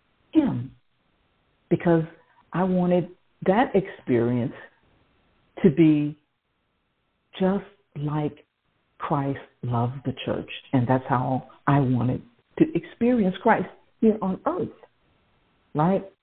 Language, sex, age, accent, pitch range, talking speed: English, female, 50-69, American, 130-185 Hz, 95 wpm